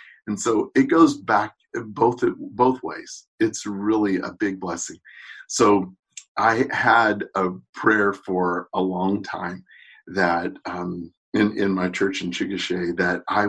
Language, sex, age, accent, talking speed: English, male, 50-69, American, 140 wpm